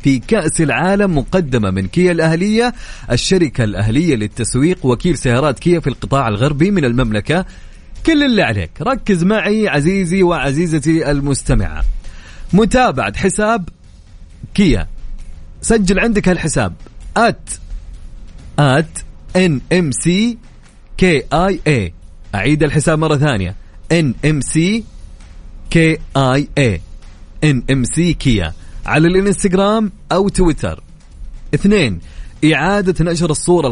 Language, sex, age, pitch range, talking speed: Arabic, male, 30-49, 110-180 Hz, 85 wpm